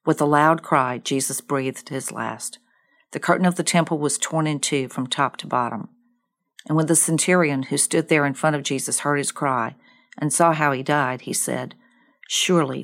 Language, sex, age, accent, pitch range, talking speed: English, female, 50-69, American, 140-175 Hz, 200 wpm